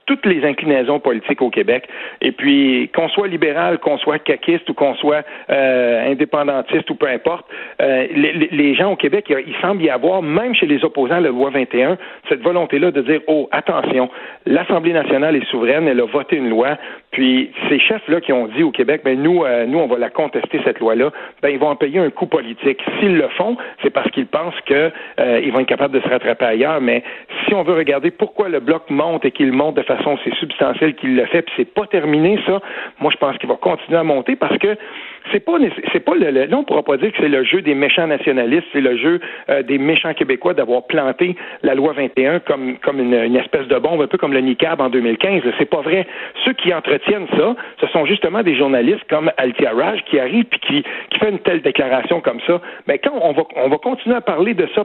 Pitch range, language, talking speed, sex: 135-205 Hz, French, 235 wpm, male